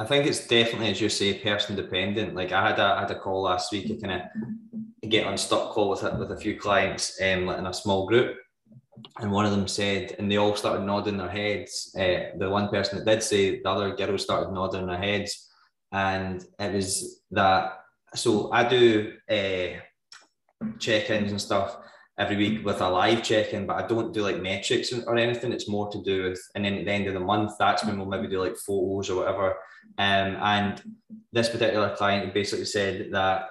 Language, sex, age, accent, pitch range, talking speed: English, male, 20-39, British, 100-115 Hz, 210 wpm